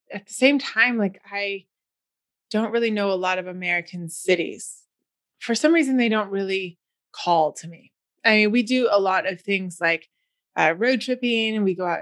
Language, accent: English, American